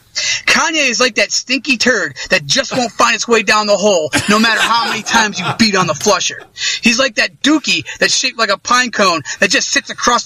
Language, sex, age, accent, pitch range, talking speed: English, male, 30-49, American, 210-265 Hz, 230 wpm